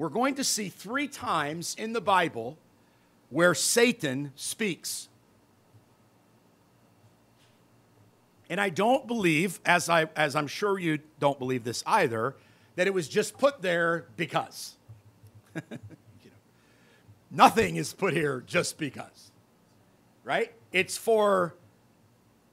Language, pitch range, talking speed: English, 125-205 Hz, 115 wpm